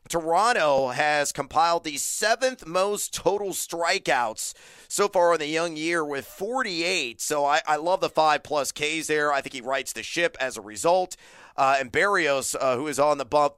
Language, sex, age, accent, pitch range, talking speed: English, male, 40-59, American, 135-170 Hz, 190 wpm